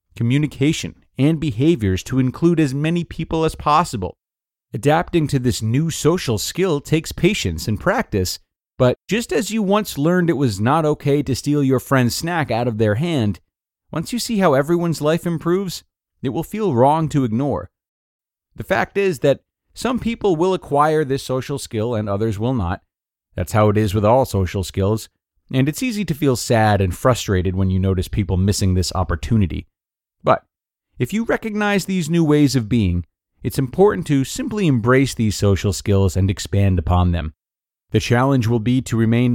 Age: 30-49